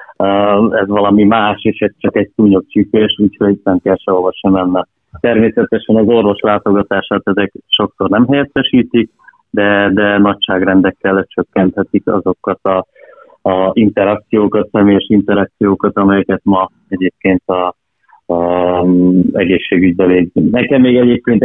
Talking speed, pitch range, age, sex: 120 wpm, 95-110 Hz, 30-49, male